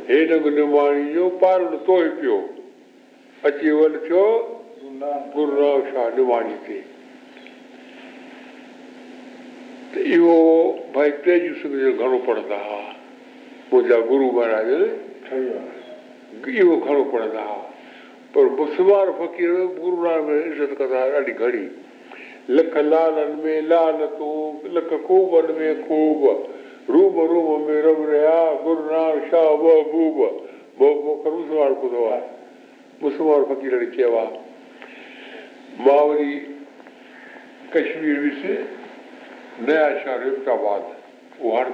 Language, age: Hindi, 60-79